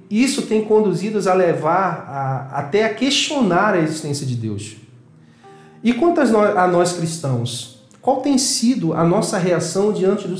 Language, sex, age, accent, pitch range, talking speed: Portuguese, male, 40-59, Brazilian, 140-190 Hz, 150 wpm